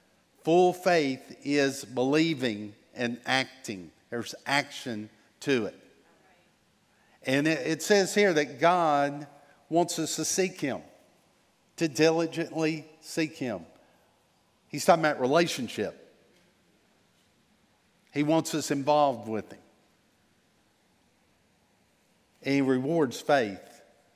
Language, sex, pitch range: English, male, 135-180 Hz